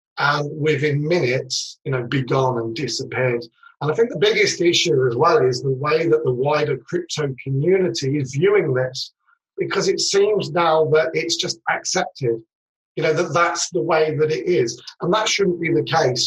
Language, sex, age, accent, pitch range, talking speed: English, male, 40-59, British, 130-170 Hz, 190 wpm